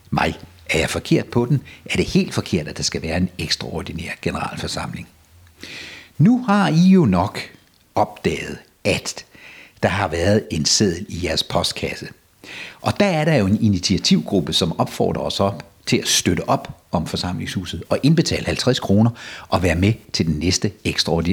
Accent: native